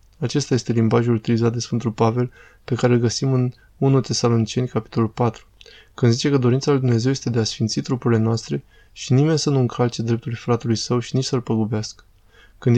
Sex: male